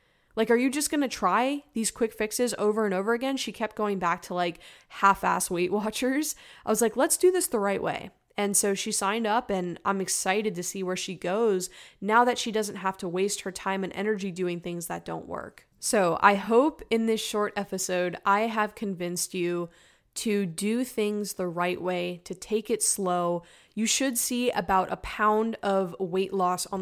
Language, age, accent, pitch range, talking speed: English, 20-39, American, 180-215 Hz, 205 wpm